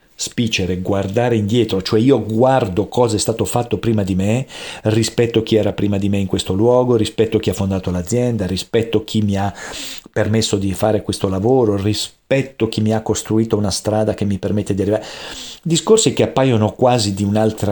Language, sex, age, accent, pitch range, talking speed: Italian, male, 40-59, native, 100-115 Hz, 180 wpm